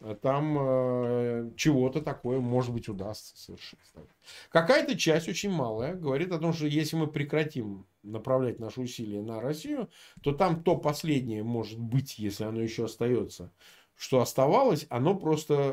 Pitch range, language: 115-160 Hz, Russian